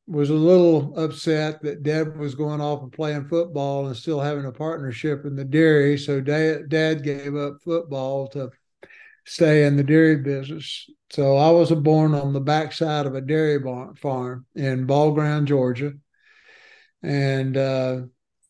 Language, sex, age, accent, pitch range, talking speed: English, male, 60-79, American, 135-155 Hz, 155 wpm